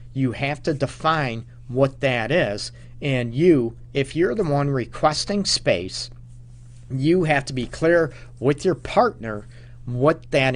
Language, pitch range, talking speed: English, 120-140 Hz, 140 wpm